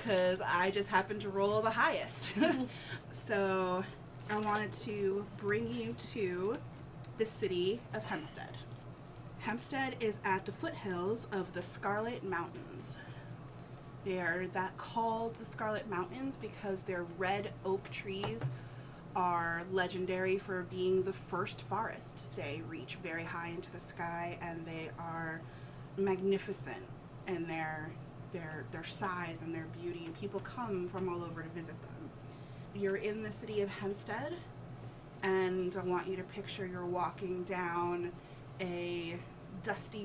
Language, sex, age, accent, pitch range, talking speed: English, female, 30-49, American, 165-205 Hz, 140 wpm